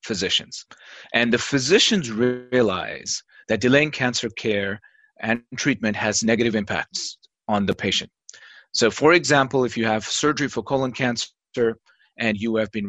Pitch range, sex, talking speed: 110-140 Hz, male, 145 wpm